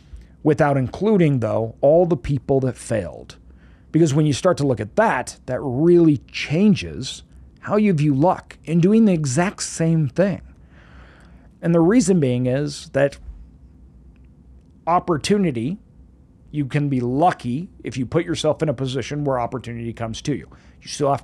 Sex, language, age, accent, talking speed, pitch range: male, English, 40-59, American, 155 wpm, 90-150 Hz